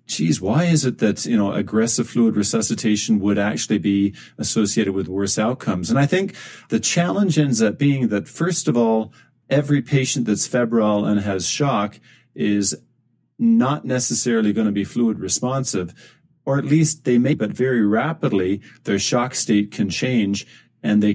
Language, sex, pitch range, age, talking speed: English, male, 105-140 Hz, 40-59, 165 wpm